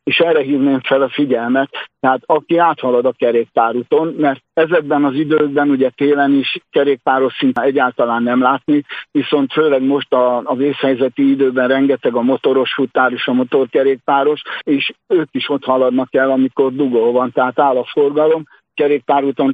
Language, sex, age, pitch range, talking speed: Hungarian, male, 60-79, 130-155 Hz, 155 wpm